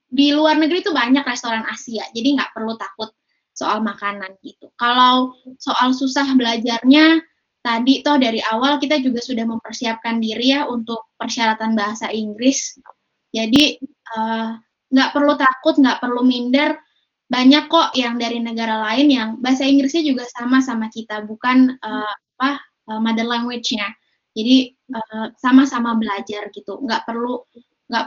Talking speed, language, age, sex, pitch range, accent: 145 wpm, Indonesian, 10-29, female, 225-270 Hz, native